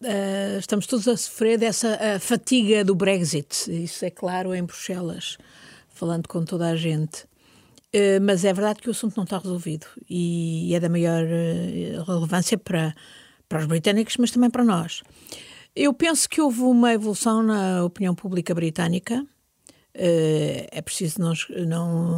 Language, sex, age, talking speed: Portuguese, female, 50-69, 165 wpm